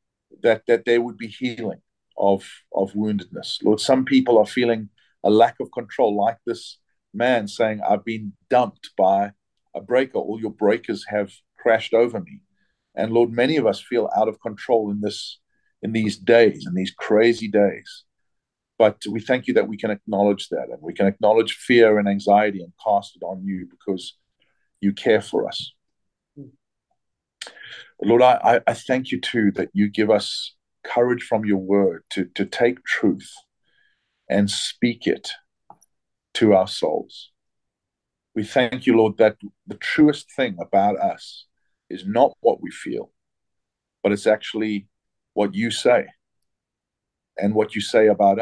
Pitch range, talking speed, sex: 100-120 Hz, 160 wpm, male